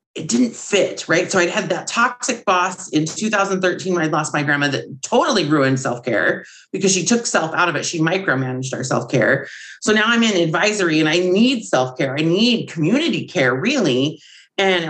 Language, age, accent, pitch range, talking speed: English, 30-49, American, 150-195 Hz, 190 wpm